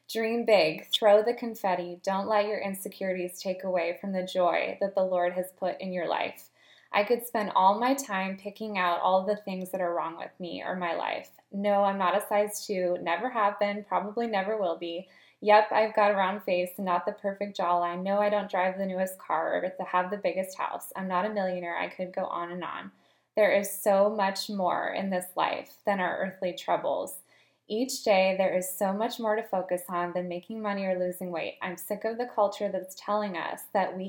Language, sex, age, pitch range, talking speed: English, female, 20-39, 180-210 Hz, 220 wpm